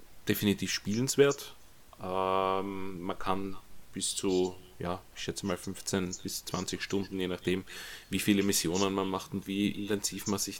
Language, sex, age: German, male, 30-49